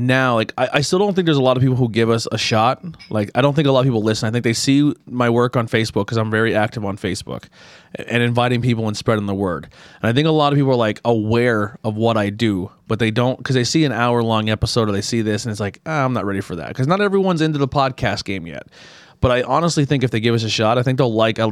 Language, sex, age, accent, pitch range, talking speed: English, male, 20-39, American, 105-130 Hz, 300 wpm